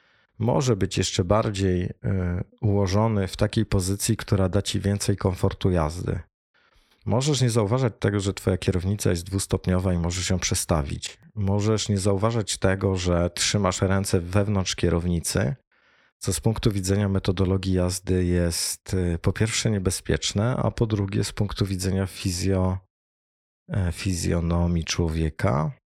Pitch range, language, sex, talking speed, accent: 85-105 Hz, Polish, male, 130 wpm, native